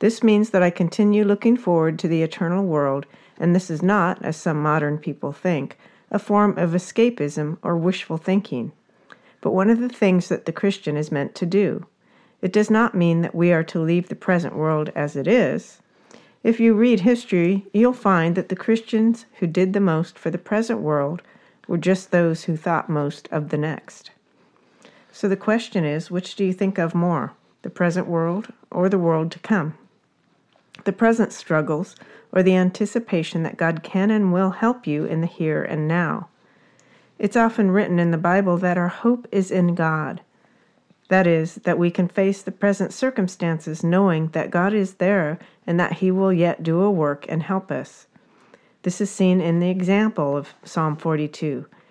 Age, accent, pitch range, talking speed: 50-69, American, 165-200 Hz, 185 wpm